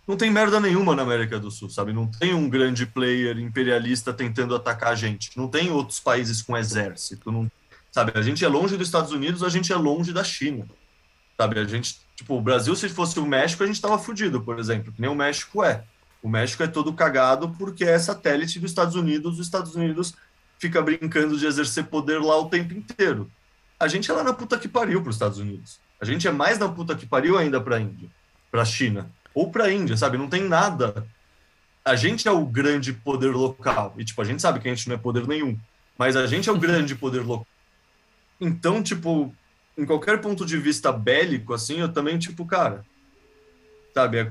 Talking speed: 215 wpm